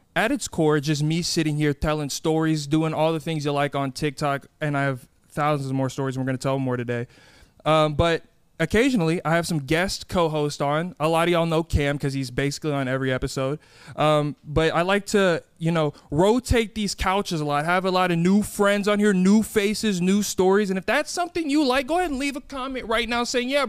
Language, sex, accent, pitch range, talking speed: English, male, American, 150-220 Hz, 235 wpm